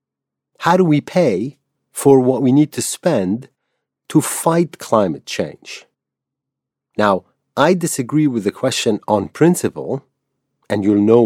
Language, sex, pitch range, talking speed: English, male, 100-145 Hz, 135 wpm